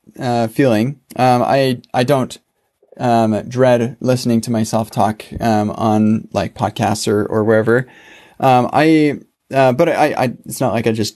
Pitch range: 110-135 Hz